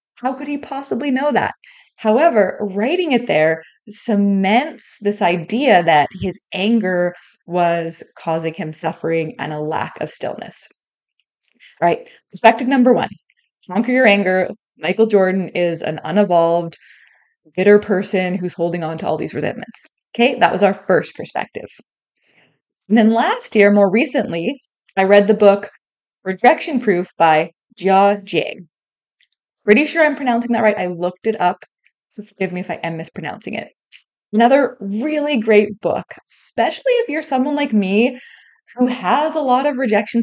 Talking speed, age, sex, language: 150 wpm, 20-39, female, English